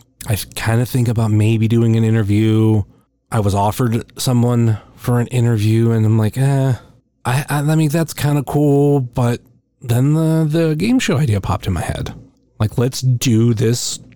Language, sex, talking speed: English, male, 180 wpm